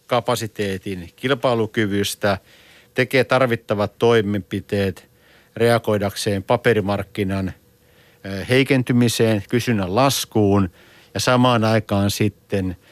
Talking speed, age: 65 wpm, 50-69